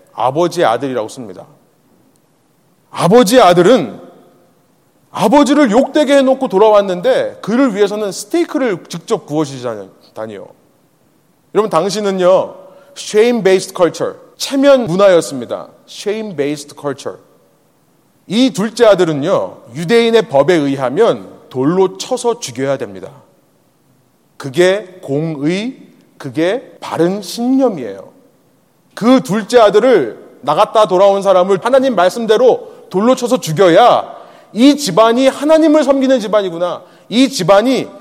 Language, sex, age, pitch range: Korean, male, 30-49, 180-265 Hz